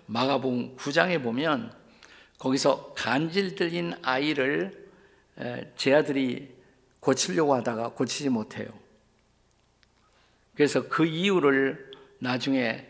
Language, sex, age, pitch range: Korean, male, 50-69, 125-160 Hz